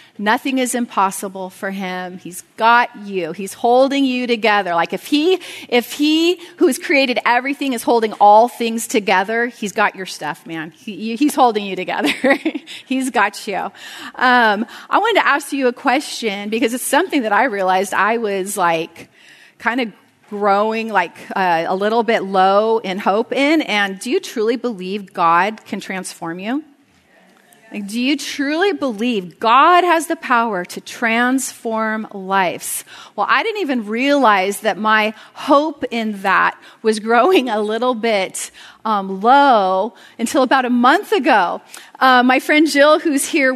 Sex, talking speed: female, 160 wpm